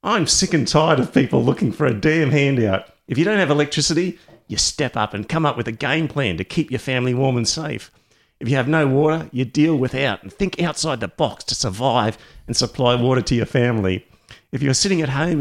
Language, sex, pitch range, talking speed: English, male, 95-135 Hz, 230 wpm